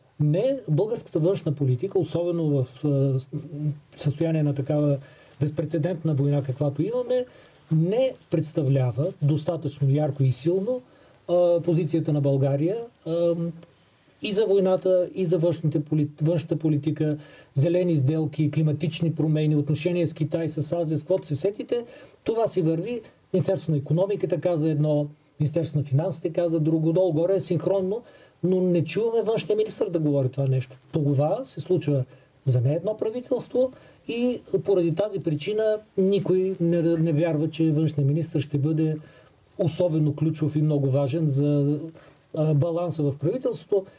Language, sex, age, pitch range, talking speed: Bulgarian, male, 40-59, 150-185 Hz, 140 wpm